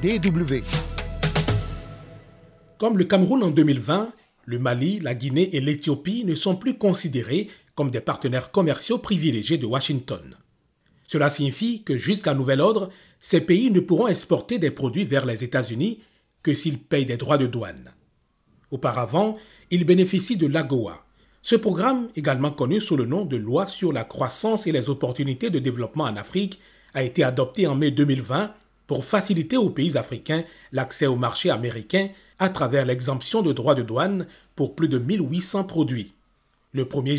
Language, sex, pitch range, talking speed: French, male, 135-190 Hz, 160 wpm